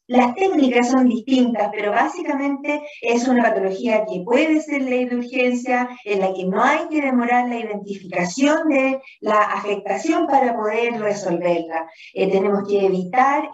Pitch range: 205-255 Hz